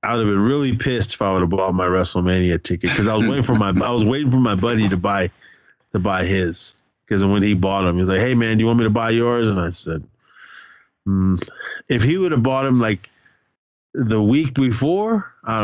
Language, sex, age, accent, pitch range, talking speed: English, male, 30-49, American, 95-125 Hz, 245 wpm